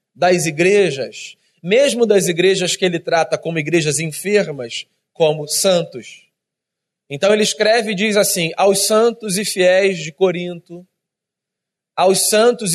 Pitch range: 175-215 Hz